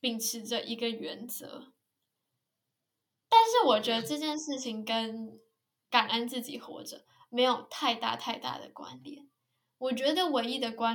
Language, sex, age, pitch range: Chinese, female, 10-29, 225-270 Hz